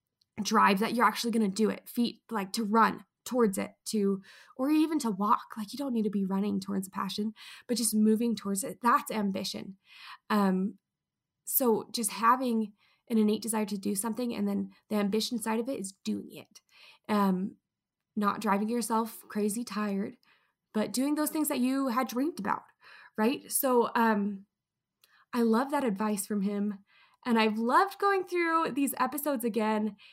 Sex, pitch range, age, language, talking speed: female, 205-250 Hz, 20-39, English, 175 wpm